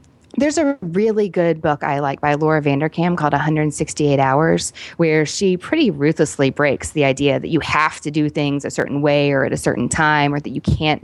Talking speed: 205 wpm